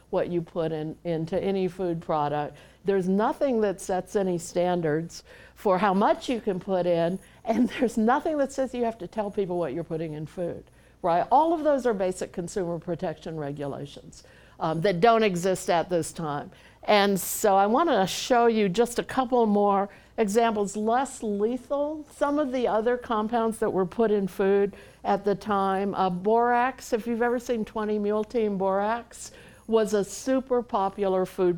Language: English